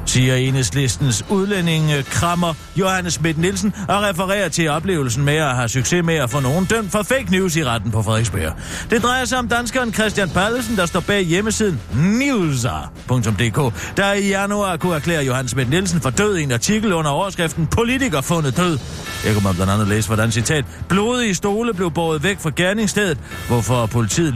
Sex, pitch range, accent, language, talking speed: male, 120-190 Hz, native, Danish, 175 wpm